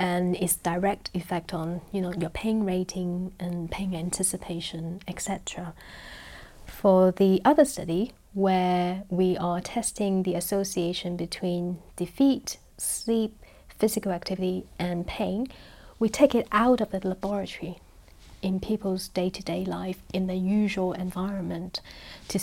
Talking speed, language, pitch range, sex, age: 125 wpm, English, 180-210 Hz, female, 30-49